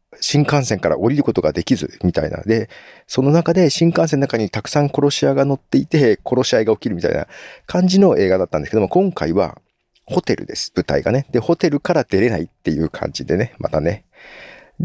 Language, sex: Japanese, male